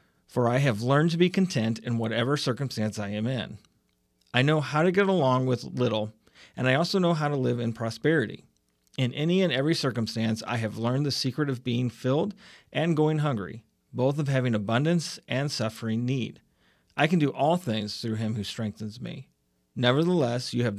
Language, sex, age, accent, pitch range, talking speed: English, male, 40-59, American, 110-145 Hz, 190 wpm